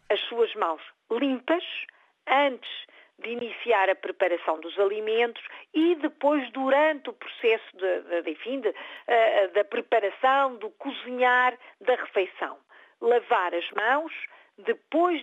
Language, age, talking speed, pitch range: Portuguese, 50-69, 120 wpm, 215-300 Hz